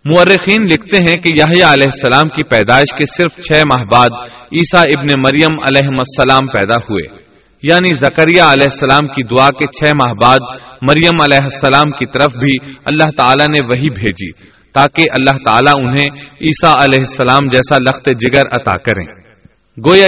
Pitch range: 130-160 Hz